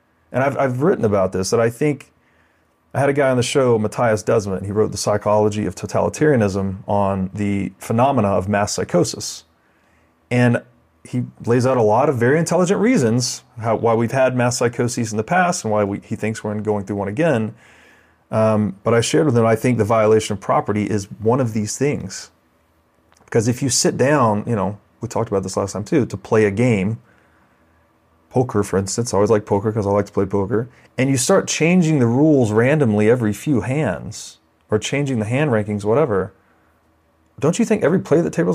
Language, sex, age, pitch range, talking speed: English, male, 30-49, 100-130 Hz, 200 wpm